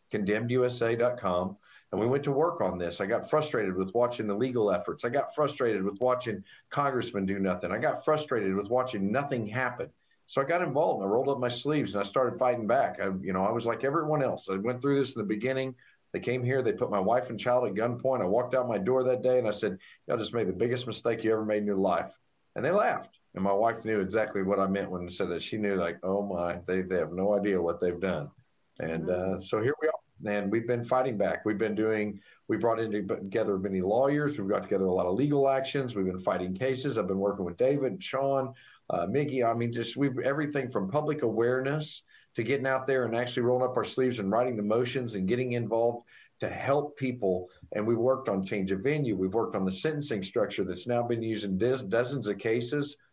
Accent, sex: American, male